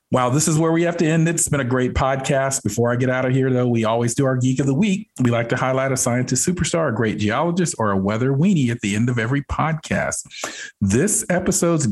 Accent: American